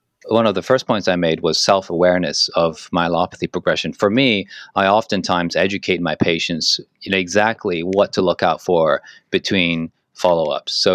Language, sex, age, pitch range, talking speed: English, male, 30-49, 85-105 Hz, 155 wpm